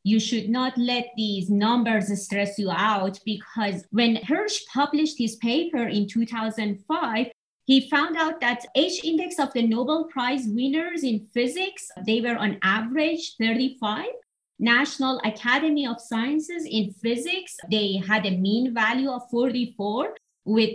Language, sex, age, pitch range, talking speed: English, female, 30-49, 205-275 Hz, 140 wpm